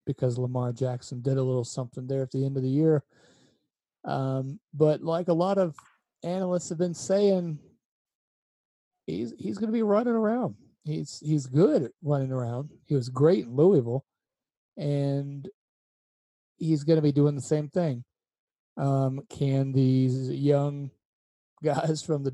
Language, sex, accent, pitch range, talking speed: English, male, American, 135-170 Hz, 155 wpm